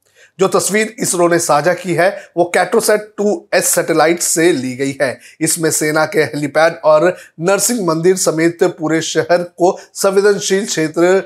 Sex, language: male, Hindi